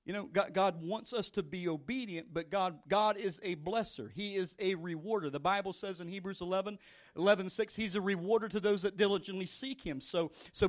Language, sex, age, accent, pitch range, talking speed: English, male, 40-59, American, 195-245 Hz, 210 wpm